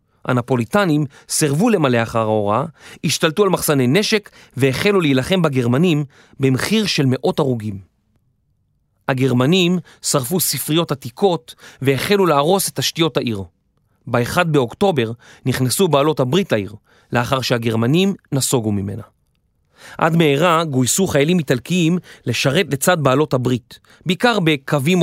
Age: 30-49